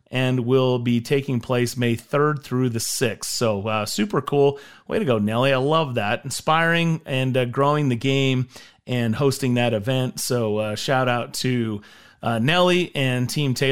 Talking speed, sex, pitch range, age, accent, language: 175 wpm, male, 120-160 Hz, 30-49, American, English